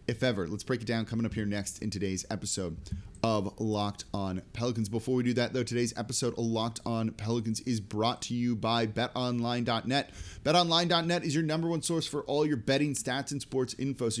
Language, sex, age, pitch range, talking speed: English, male, 30-49, 110-135 Hz, 205 wpm